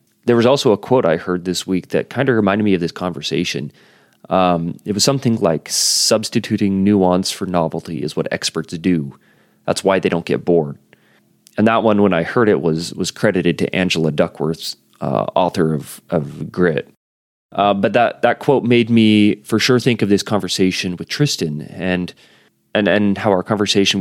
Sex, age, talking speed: male, 30-49, 185 wpm